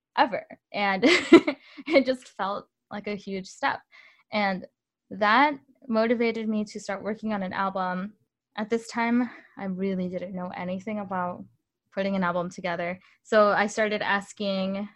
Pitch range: 185-220 Hz